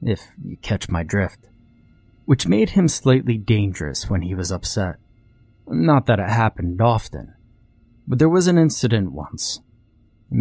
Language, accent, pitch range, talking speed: English, American, 95-120 Hz, 150 wpm